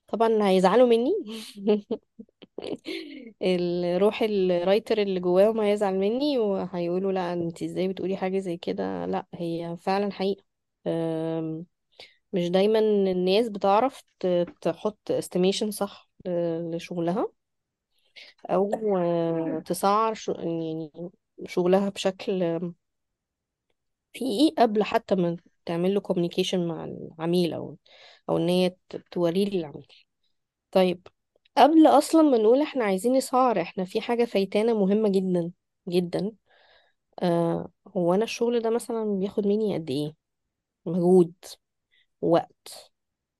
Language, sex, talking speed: Arabic, female, 100 wpm